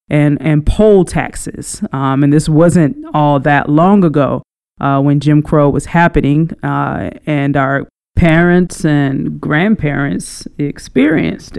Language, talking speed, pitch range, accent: English, 130 wpm, 145-170 Hz, American